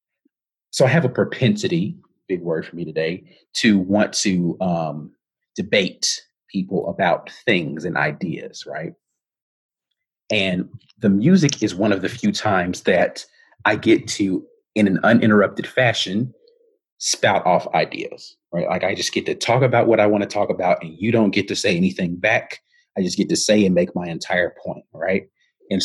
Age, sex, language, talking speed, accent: 30-49, male, English, 175 wpm, American